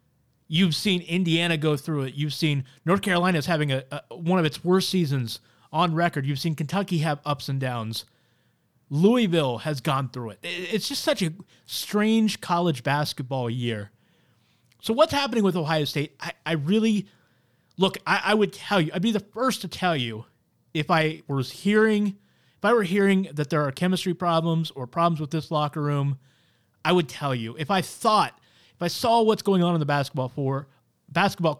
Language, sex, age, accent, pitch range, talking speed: English, male, 30-49, American, 135-185 Hz, 180 wpm